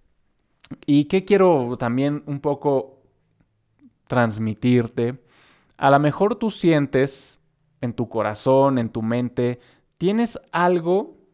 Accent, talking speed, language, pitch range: Mexican, 105 wpm, Spanish, 115-140 Hz